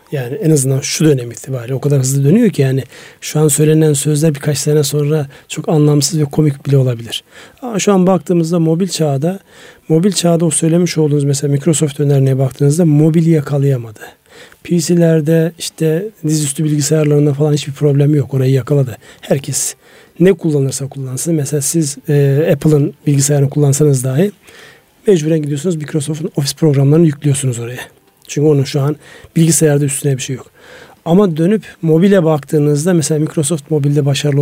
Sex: male